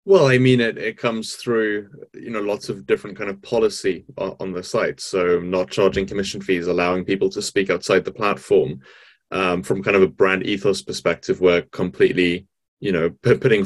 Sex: male